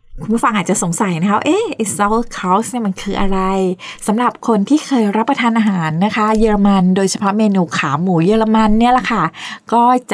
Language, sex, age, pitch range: Thai, female, 20-39, 185-230 Hz